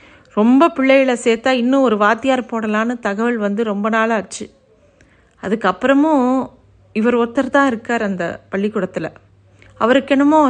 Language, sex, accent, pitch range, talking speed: Tamil, female, native, 215-260 Hz, 115 wpm